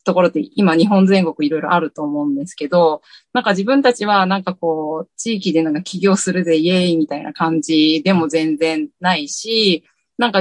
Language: Japanese